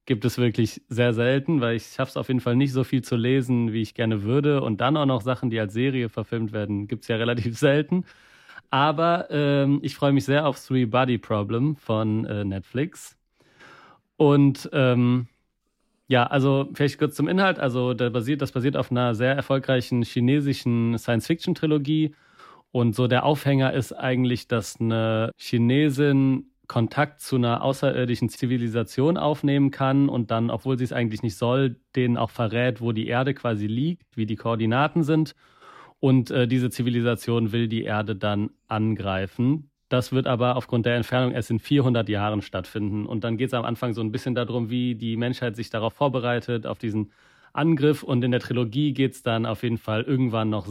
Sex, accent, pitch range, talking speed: male, German, 115-135 Hz, 180 wpm